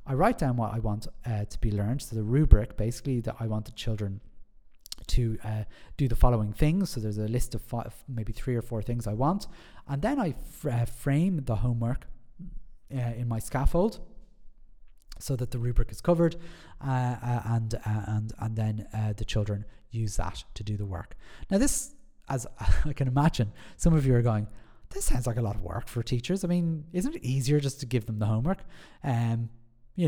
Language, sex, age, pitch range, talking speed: English, male, 30-49, 110-150 Hz, 210 wpm